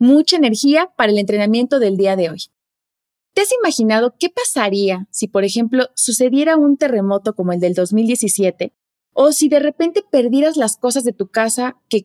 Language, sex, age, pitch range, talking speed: Spanish, female, 30-49, 215-285 Hz, 175 wpm